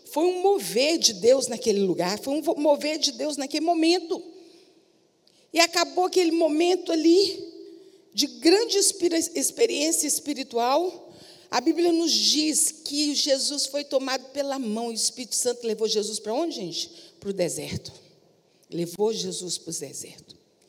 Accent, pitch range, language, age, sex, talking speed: Brazilian, 220-320 Hz, Portuguese, 50-69, female, 140 wpm